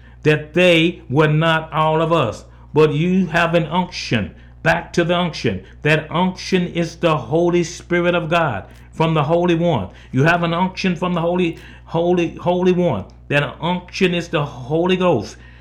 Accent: American